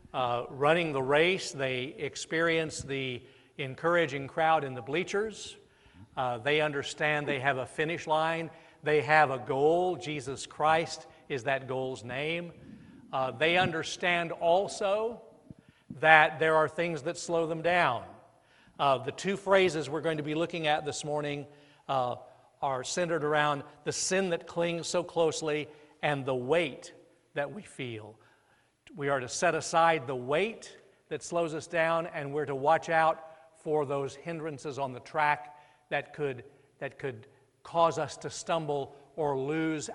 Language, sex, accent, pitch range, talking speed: English, male, American, 140-165 Hz, 150 wpm